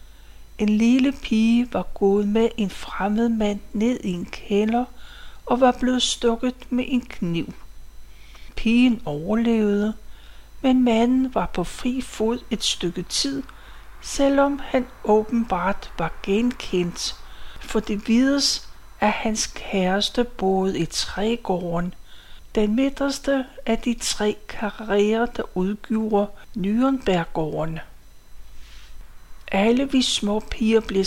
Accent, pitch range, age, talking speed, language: native, 195-245 Hz, 60-79, 115 wpm, Danish